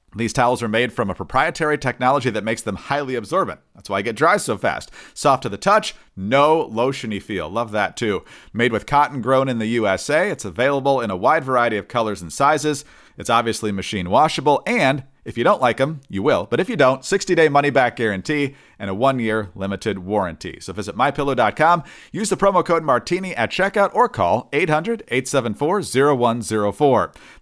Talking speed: 185 wpm